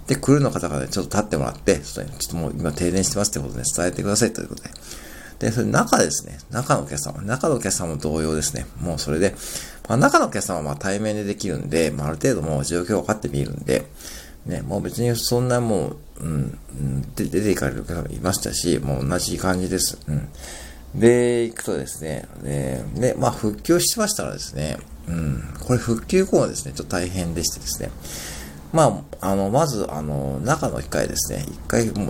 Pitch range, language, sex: 70-110 Hz, Japanese, male